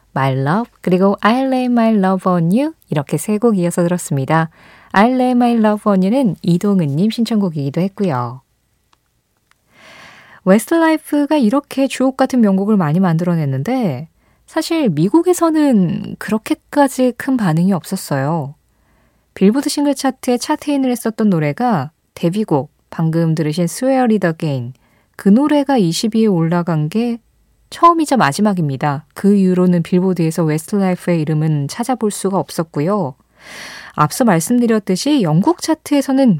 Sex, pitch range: female, 165-255 Hz